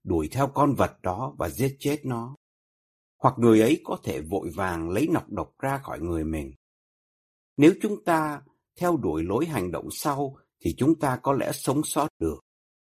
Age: 60-79